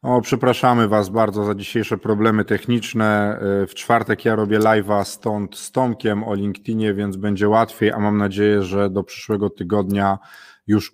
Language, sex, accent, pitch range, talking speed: Polish, male, native, 105-125 Hz, 160 wpm